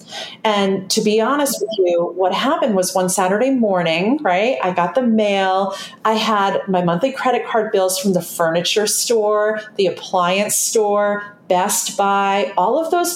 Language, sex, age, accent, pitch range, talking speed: English, female, 40-59, American, 190-245 Hz, 165 wpm